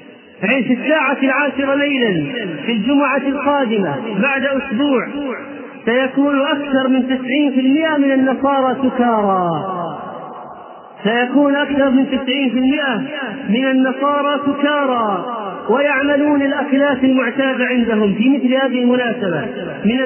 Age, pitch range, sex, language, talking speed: 30-49, 245-280 Hz, male, Arabic, 100 wpm